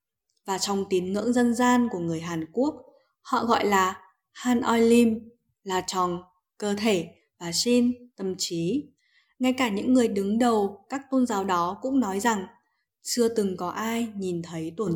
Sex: female